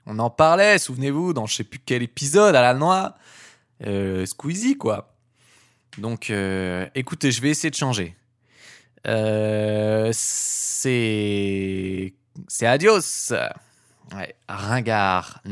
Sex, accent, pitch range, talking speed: male, French, 110-150 Hz, 115 wpm